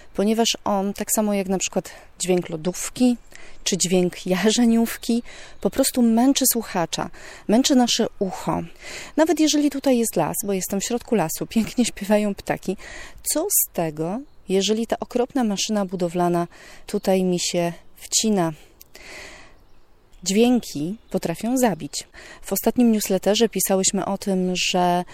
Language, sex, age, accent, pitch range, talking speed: Polish, female, 30-49, native, 180-225 Hz, 130 wpm